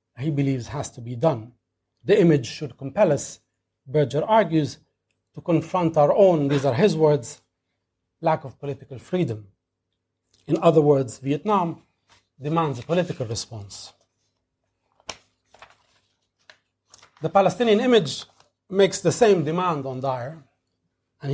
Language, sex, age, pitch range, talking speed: English, male, 40-59, 110-165 Hz, 120 wpm